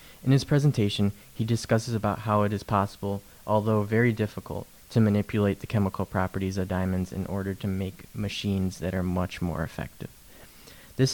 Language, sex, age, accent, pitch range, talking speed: English, male, 20-39, American, 95-110 Hz, 165 wpm